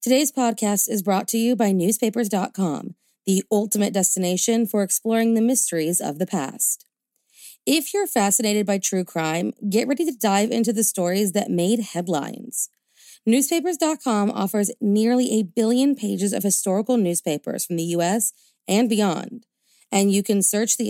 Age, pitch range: 30-49, 190-235 Hz